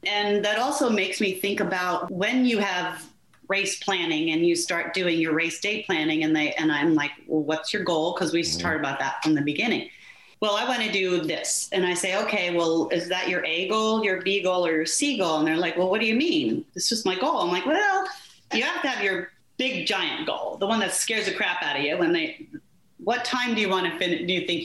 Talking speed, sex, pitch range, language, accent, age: 255 wpm, female, 180-240 Hz, English, American, 30-49